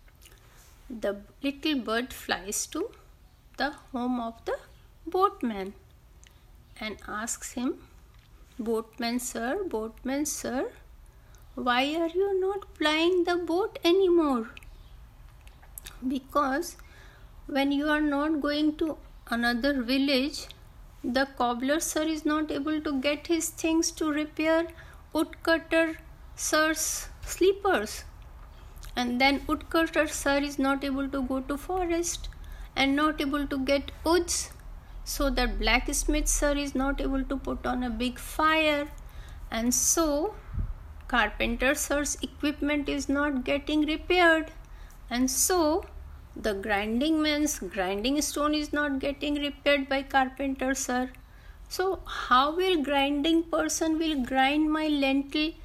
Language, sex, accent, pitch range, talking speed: Hindi, female, native, 265-315 Hz, 120 wpm